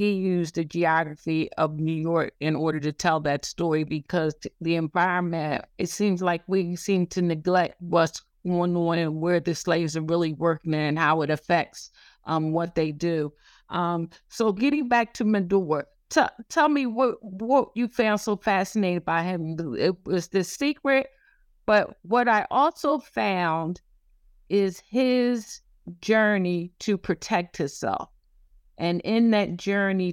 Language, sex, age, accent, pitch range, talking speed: English, female, 50-69, American, 170-210 Hz, 150 wpm